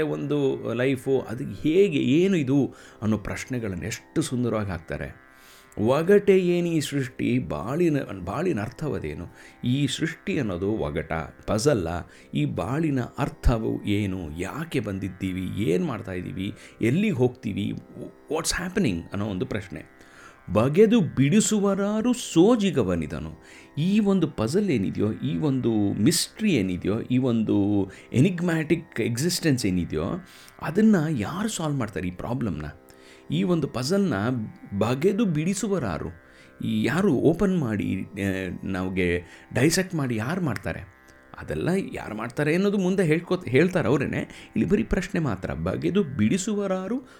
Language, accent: Kannada, native